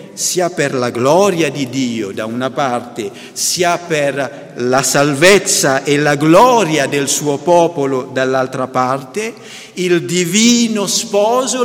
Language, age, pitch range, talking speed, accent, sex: Italian, 50-69, 135-220 Hz, 125 wpm, native, male